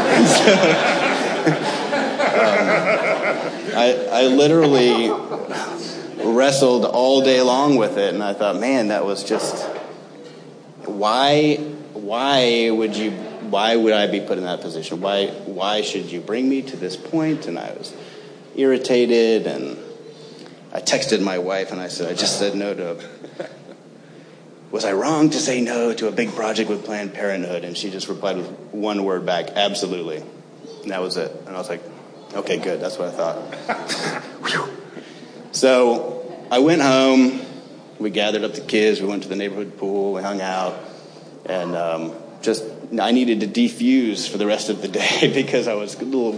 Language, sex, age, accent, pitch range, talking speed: English, male, 30-49, American, 100-130 Hz, 165 wpm